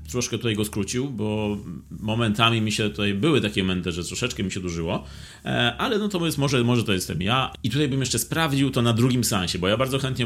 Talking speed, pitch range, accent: 230 wpm, 90-115 Hz, native